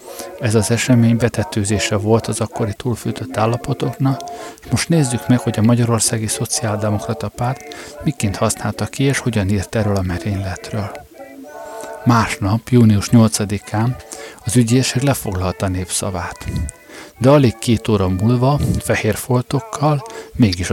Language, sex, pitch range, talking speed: Hungarian, male, 105-125 Hz, 120 wpm